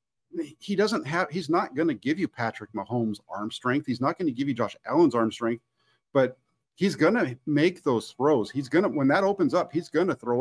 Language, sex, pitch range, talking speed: English, male, 125-170 Hz, 235 wpm